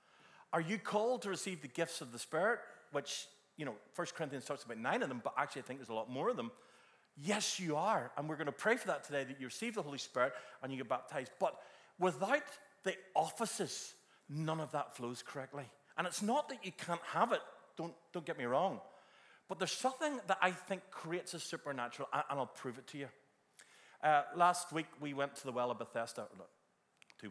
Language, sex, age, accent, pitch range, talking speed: English, male, 40-59, British, 120-175 Hz, 220 wpm